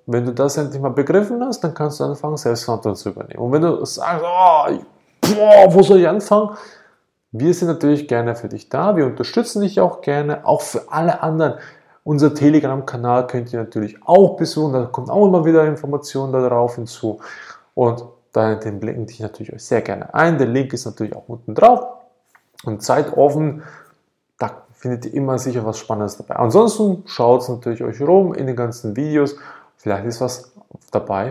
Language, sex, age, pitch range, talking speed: German, male, 20-39, 115-155 Hz, 180 wpm